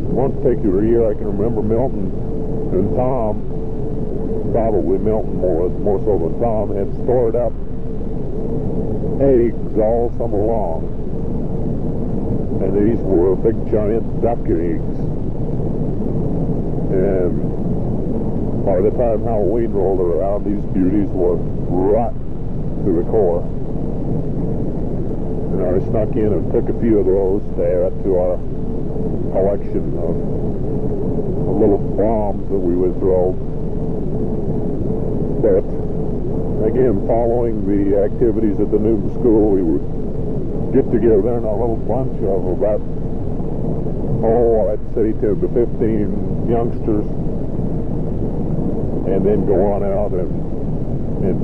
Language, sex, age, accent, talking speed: English, female, 60-79, American, 120 wpm